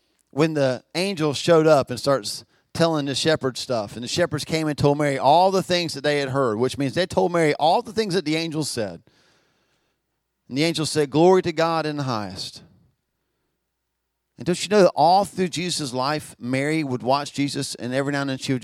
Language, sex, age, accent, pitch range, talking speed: English, male, 40-59, American, 135-190 Hz, 215 wpm